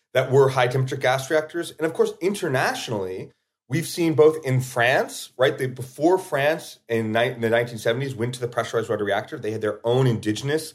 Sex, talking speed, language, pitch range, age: male, 180 wpm, English, 115-165 Hz, 30-49